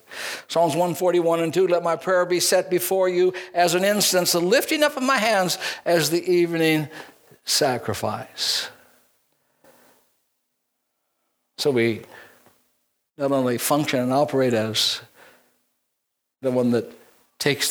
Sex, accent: male, American